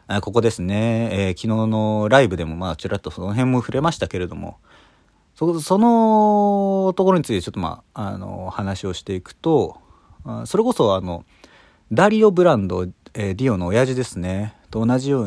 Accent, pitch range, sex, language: native, 105-170 Hz, male, Japanese